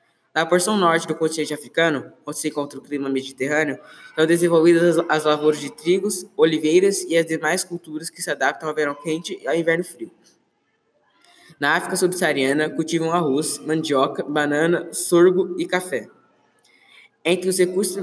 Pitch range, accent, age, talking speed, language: 155-175 Hz, Brazilian, 10-29, 155 wpm, Portuguese